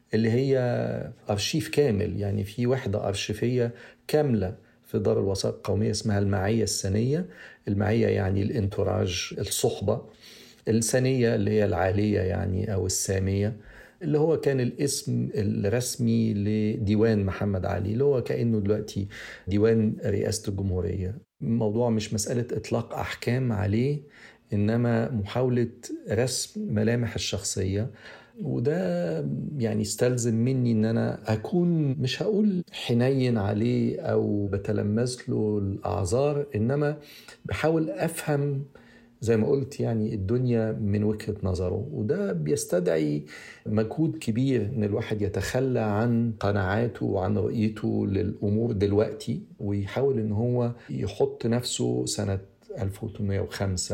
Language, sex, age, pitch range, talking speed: Arabic, male, 50-69, 100-120 Hz, 110 wpm